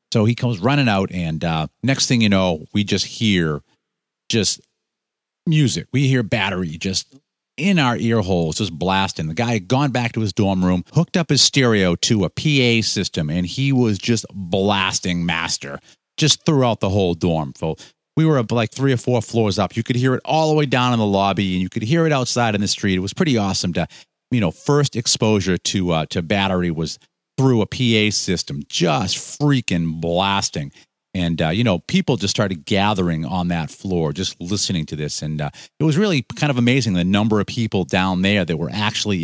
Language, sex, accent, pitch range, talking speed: English, male, American, 90-125 Hz, 210 wpm